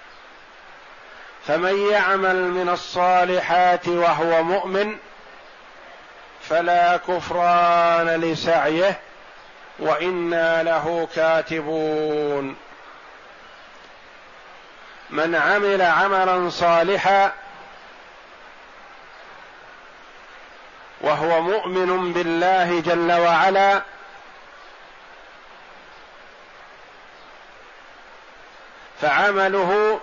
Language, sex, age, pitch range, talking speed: Arabic, male, 50-69, 165-190 Hz, 45 wpm